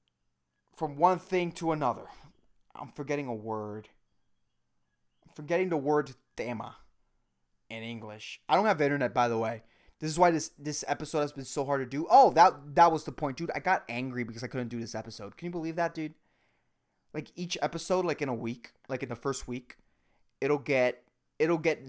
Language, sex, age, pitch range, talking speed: English, male, 20-39, 130-190 Hz, 195 wpm